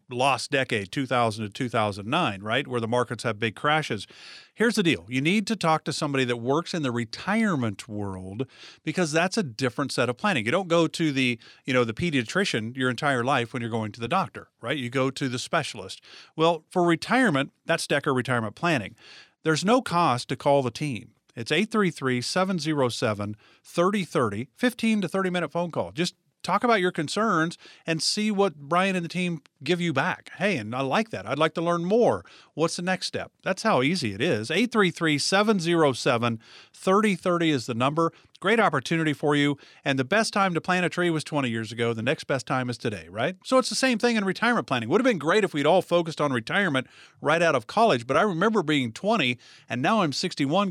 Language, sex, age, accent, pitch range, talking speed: English, male, 40-59, American, 125-180 Hz, 200 wpm